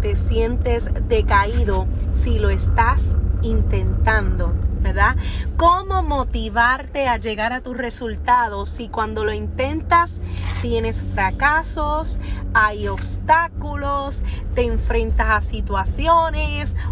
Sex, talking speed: female, 95 wpm